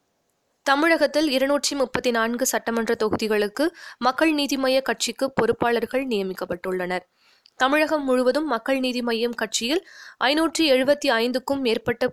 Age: 20-39